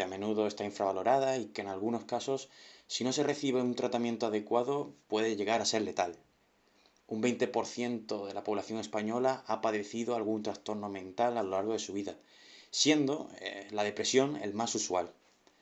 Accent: Spanish